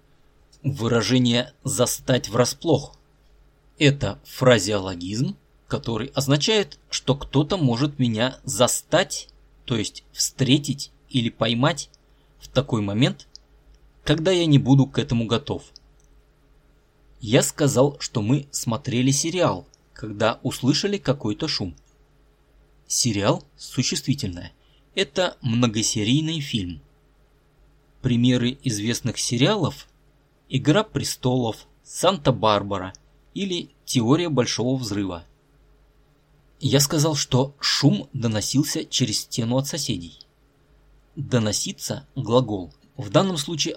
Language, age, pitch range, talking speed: Russian, 20-39, 120-145 Hz, 90 wpm